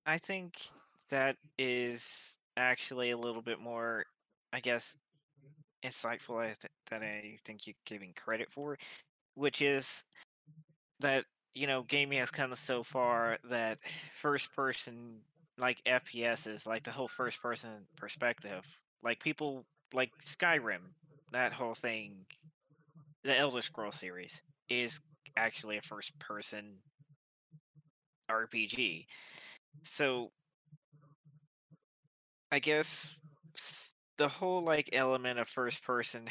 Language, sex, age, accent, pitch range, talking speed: English, male, 20-39, American, 120-150 Hz, 115 wpm